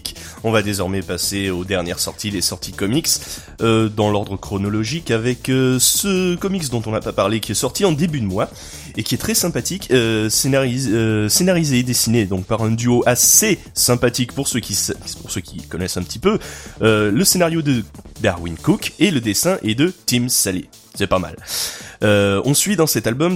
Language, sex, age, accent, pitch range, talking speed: French, male, 20-39, French, 100-130 Hz, 205 wpm